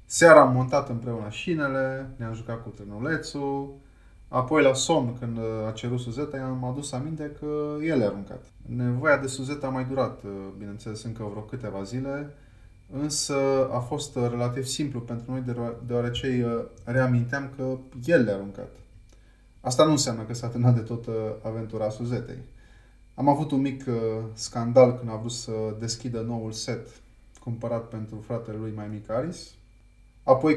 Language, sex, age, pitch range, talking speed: Romanian, male, 20-39, 110-135 Hz, 155 wpm